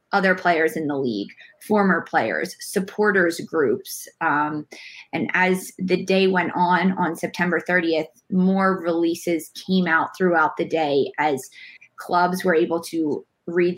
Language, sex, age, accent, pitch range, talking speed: English, female, 20-39, American, 165-185 Hz, 140 wpm